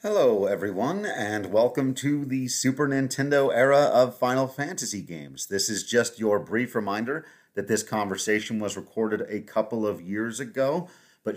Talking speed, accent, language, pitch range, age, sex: 160 wpm, American, English, 105-130 Hz, 30-49, male